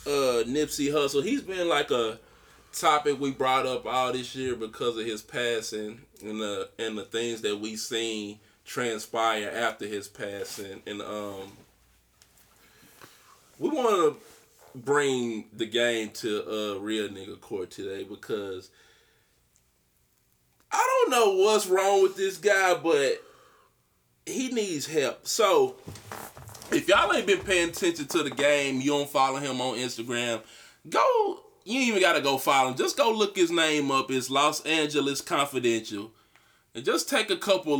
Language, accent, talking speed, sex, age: English, American, 155 wpm, male, 20-39